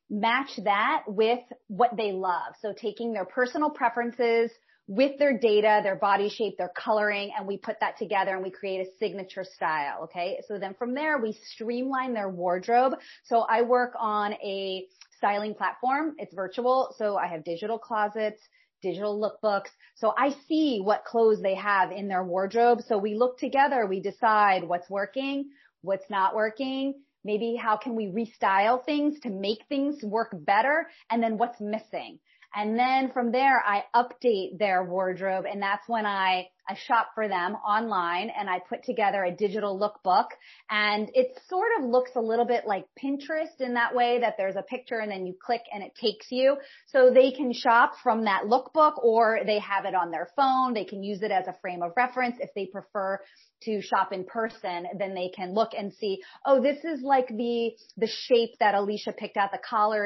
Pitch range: 195-245 Hz